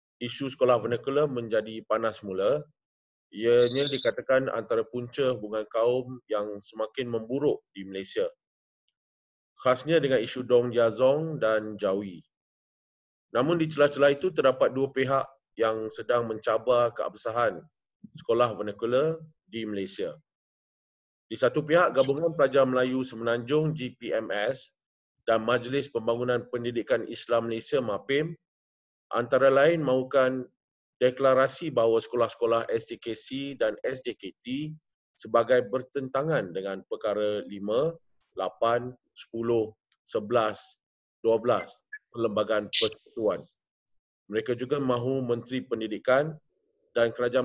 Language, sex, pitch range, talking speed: Malay, male, 115-140 Hz, 100 wpm